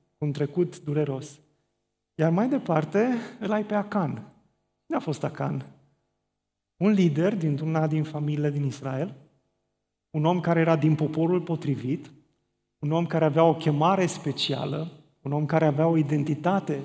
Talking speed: 150 wpm